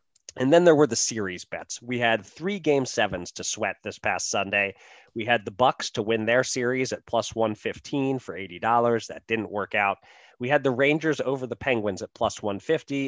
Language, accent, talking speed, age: English, American, 200 wpm, 30-49